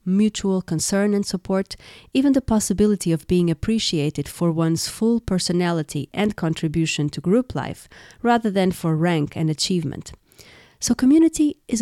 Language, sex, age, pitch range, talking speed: English, female, 30-49, 165-215 Hz, 140 wpm